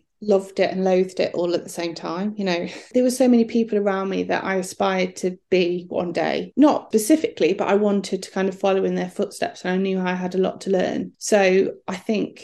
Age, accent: 30-49, British